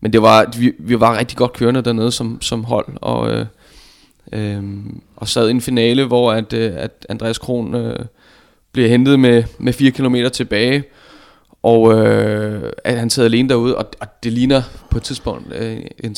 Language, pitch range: Danish, 110-125 Hz